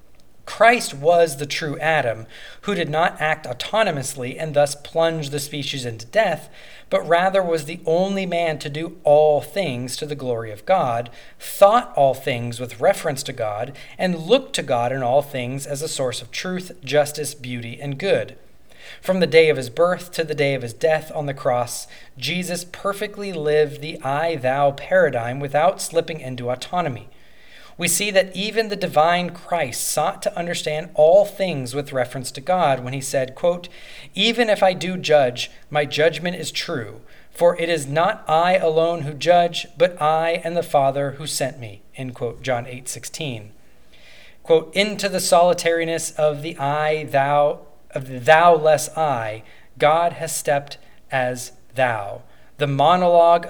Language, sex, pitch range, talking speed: English, male, 135-170 Hz, 170 wpm